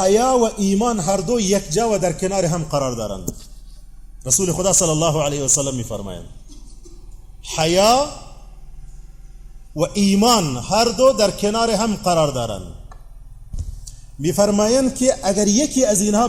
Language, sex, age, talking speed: English, male, 40-59, 145 wpm